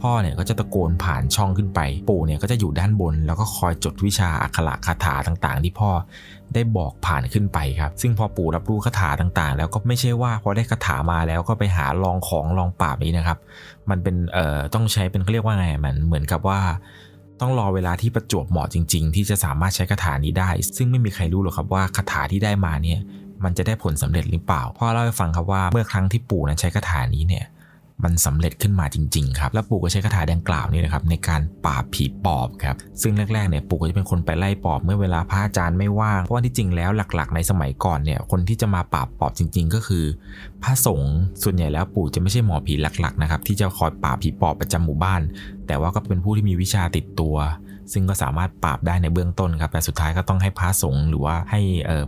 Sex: male